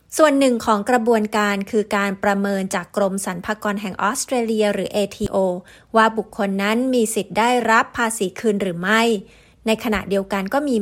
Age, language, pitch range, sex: 30-49, Thai, 200-245 Hz, female